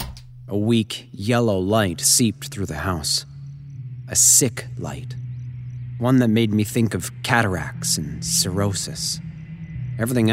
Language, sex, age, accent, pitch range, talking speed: English, male, 30-49, American, 95-125 Hz, 120 wpm